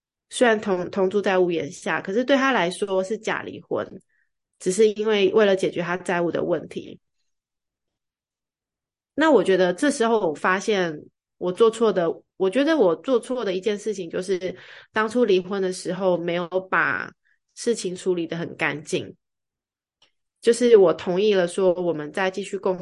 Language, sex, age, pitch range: Chinese, female, 20-39, 175-215 Hz